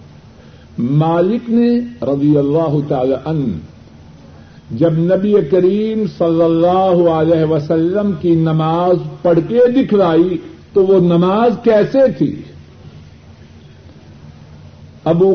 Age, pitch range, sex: 60-79, 155-195 Hz, male